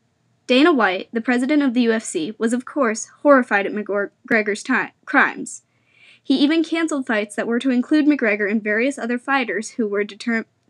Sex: female